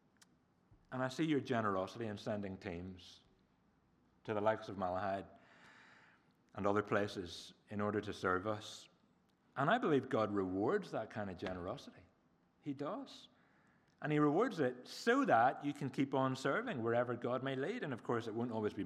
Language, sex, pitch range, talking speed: English, male, 100-150 Hz, 170 wpm